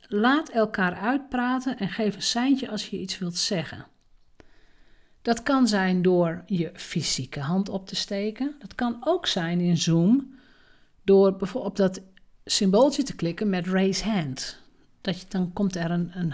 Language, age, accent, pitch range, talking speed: Dutch, 50-69, Dutch, 180-220 Hz, 165 wpm